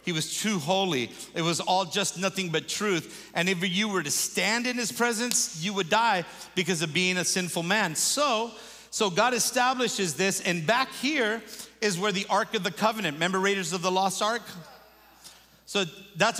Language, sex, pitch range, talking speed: English, male, 175-220 Hz, 190 wpm